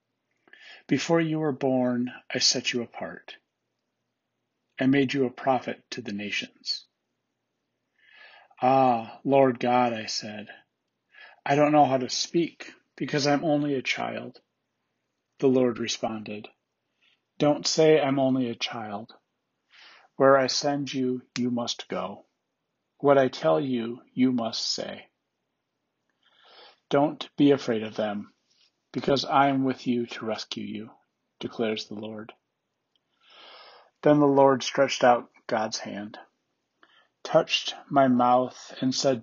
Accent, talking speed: American, 125 wpm